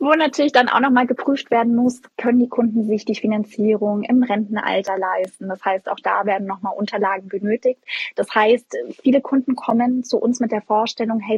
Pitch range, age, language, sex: 195-225 Hz, 20-39, German, female